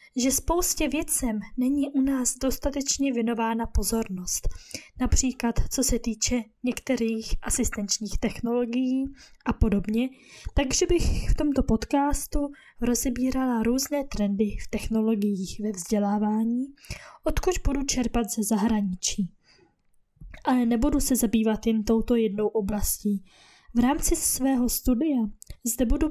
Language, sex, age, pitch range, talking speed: Czech, female, 10-29, 220-275 Hz, 115 wpm